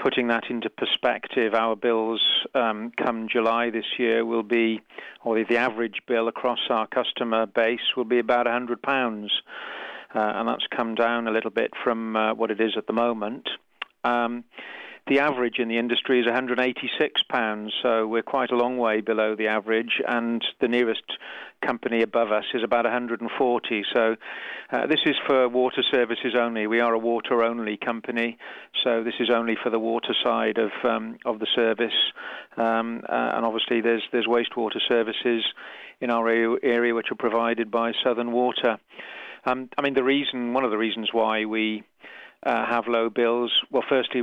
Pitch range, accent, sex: 115-120 Hz, British, male